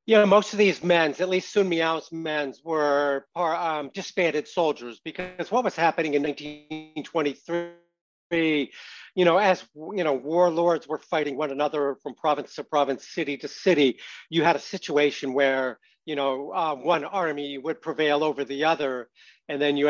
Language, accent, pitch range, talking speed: English, American, 140-165 Hz, 165 wpm